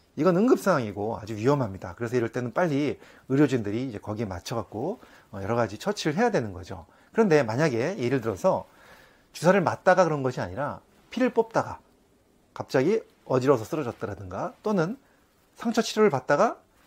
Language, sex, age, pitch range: Korean, male, 30-49, 115-175 Hz